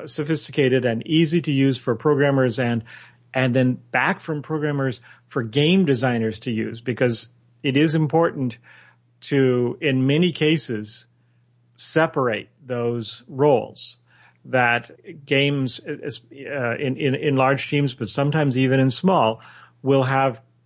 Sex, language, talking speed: male, English, 130 wpm